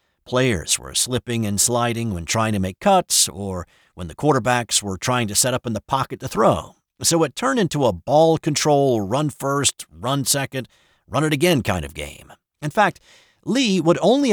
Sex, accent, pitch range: male, American, 115-175 Hz